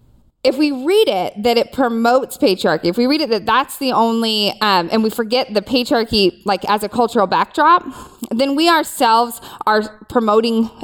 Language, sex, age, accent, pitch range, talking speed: English, female, 20-39, American, 200-265 Hz, 175 wpm